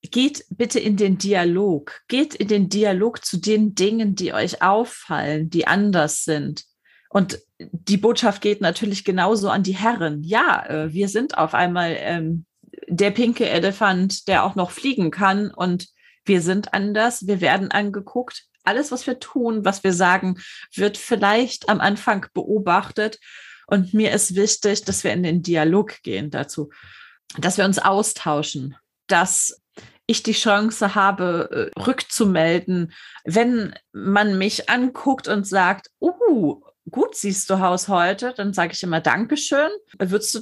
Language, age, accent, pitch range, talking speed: German, 30-49, German, 185-225 Hz, 150 wpm